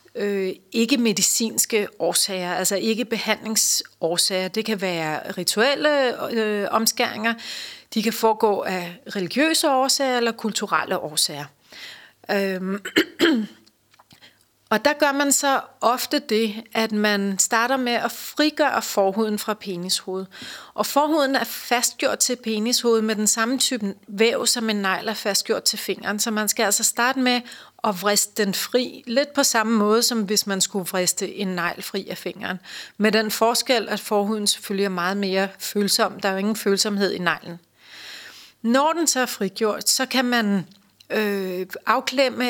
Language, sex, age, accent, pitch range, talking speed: Danish, female, 30-49, native, 200-240 Hz, 150 wpm